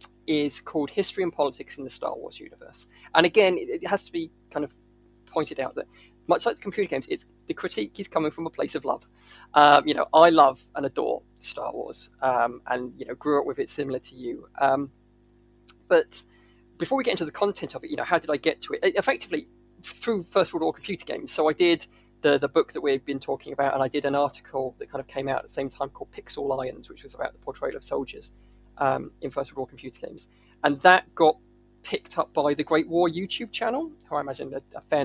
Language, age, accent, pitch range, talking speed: English, 20-39, British, 130-185 Hz, 240 wpm